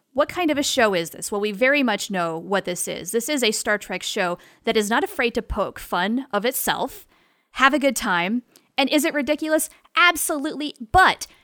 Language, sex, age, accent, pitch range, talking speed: English, female, 30-49, American, 195-280 Hz, 210 wpm